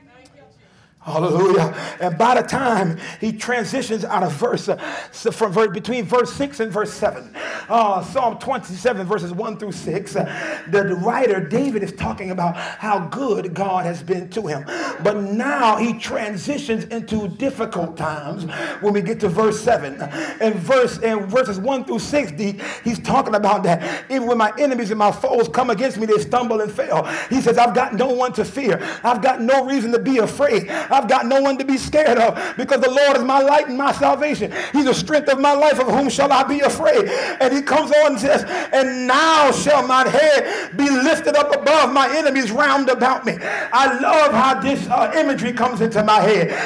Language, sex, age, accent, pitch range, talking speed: English, male, 40-59, American, 215-275 Hz, 200 wpm